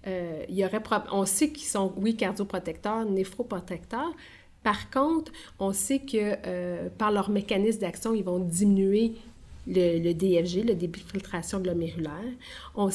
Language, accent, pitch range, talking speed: French, Canadian, 190-230 Hz, 160 wpm